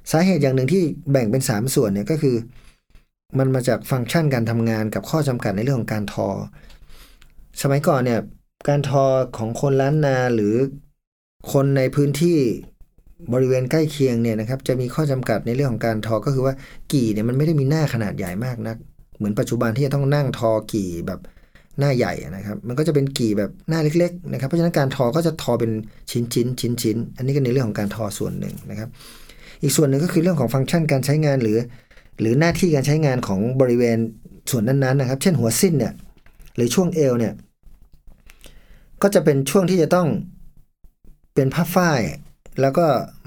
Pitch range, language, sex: 115-155 Hz, Thai, male